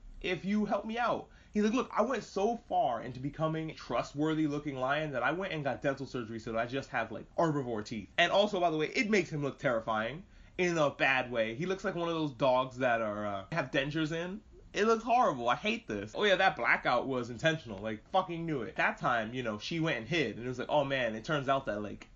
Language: English